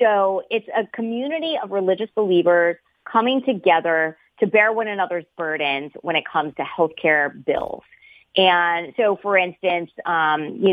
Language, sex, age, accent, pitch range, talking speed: English, female, 30-49, American, 175-230 Hz, 145 wpm